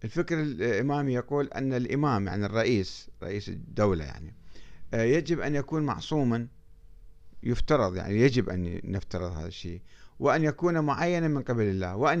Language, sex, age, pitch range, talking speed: Arabic, male, 50-69, 100-145 Hz, 140 wpm